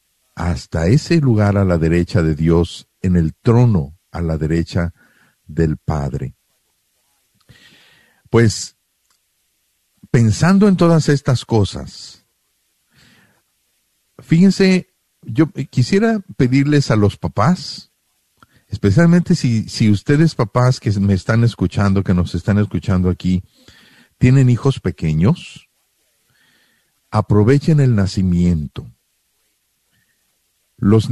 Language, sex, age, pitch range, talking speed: Spanish, male, 50-69, 95-135 Hz, 95 wpm